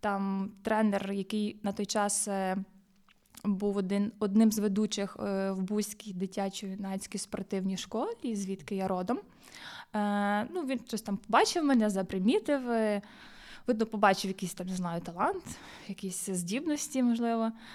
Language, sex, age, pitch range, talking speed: Ukrainian, female, 20-39, 205-260 Hz, 115 wpm